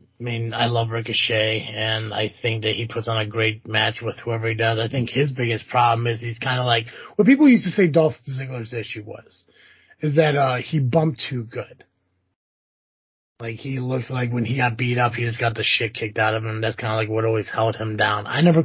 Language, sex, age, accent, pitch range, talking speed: English, male, 30-49, American, 115-130 Hz, 240 wpm